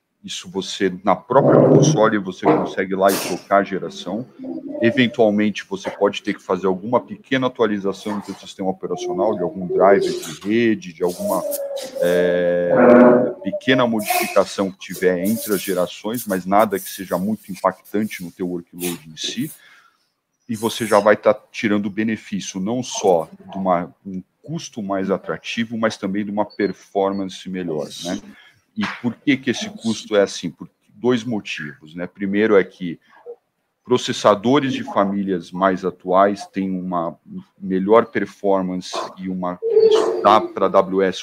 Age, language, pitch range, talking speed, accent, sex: 40-59, Portuguese, 95-145 Hz, 155 wpm, Brazilian, male